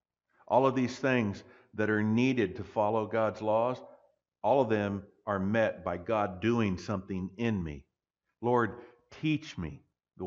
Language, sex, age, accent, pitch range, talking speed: English, male, 50-69, American, 90-135 Hz, 150 wpm